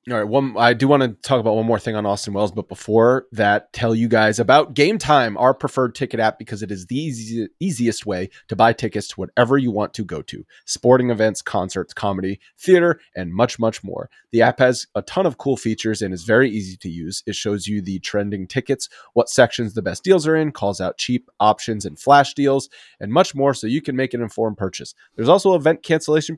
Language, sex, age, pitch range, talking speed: English, male, 30-49, 105-140 Hz, 230 wpm